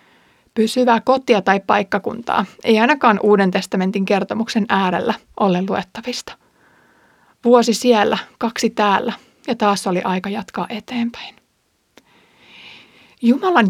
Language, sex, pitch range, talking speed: Finnish, female, 200-245 Hz, 100 wpm